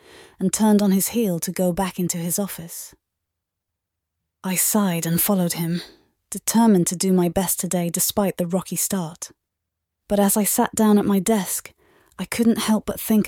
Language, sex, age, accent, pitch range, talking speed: English, female, 30-49, British, 175-220 Hz, 175 wpm